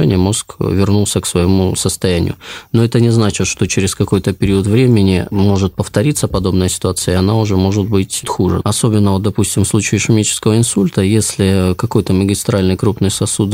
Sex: male